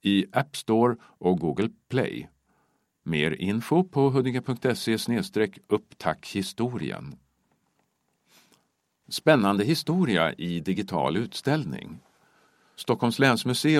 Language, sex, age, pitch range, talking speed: Swedish, male, 50-69, 90-125 Hz, 70 wpm